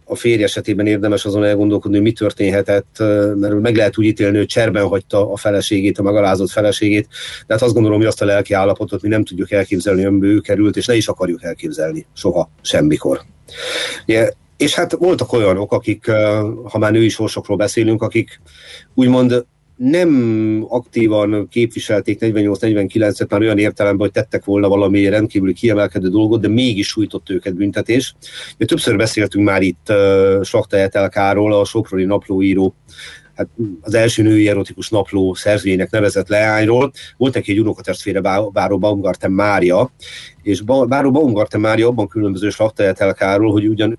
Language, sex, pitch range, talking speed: Hungarian, male, 100-110 Hz, 155 wpm